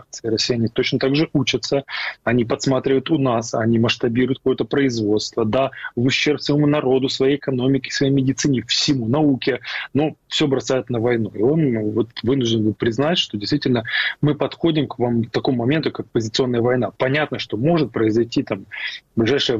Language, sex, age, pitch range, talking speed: Ukrainian, male, 20-39, 120-140 Hz, 165 wpm